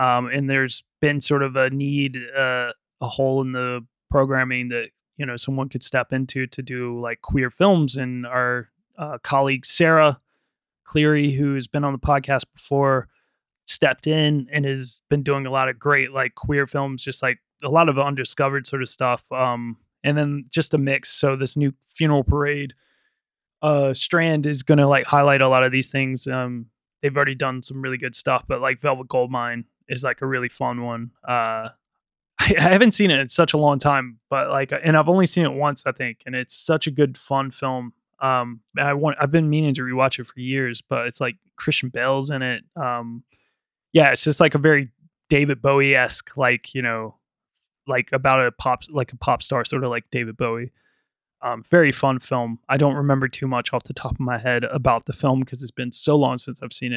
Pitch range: 125-145 Hz